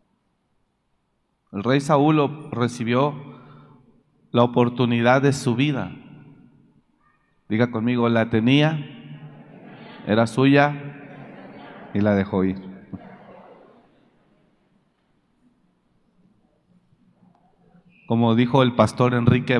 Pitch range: 120-160 Hz